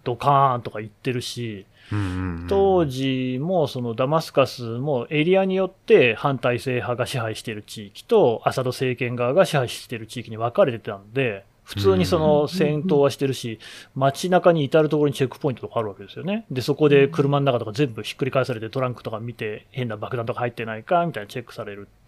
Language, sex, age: Japanese, male, 30-49